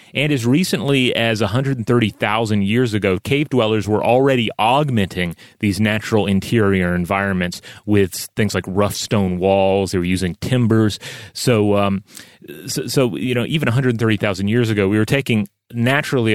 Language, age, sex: English, 30-49, male